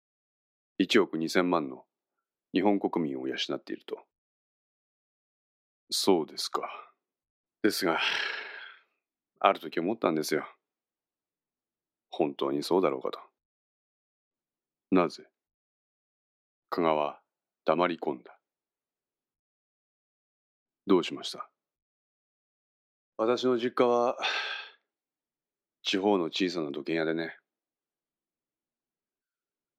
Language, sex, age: Japanese, male, 40-59